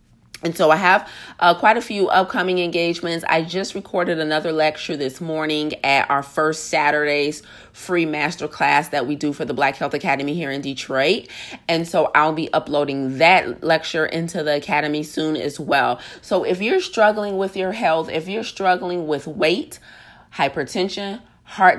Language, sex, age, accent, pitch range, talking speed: English, female, 30-49, American, 145-180 Hz, 170 wpm